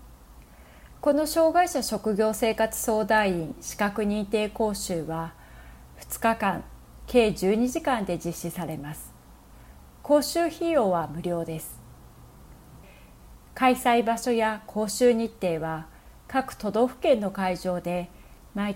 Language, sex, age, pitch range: Japanese, female, 40-59, 170-235 Hz